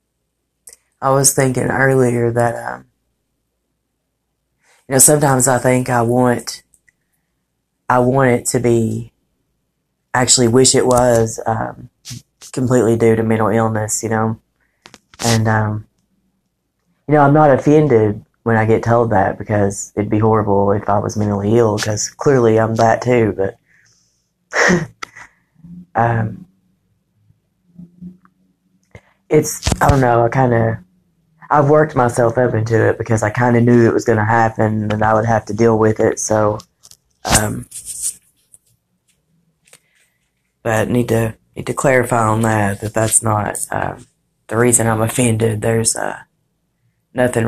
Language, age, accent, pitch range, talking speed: English, 30-49, American, 110-125 Hz, 140 wpm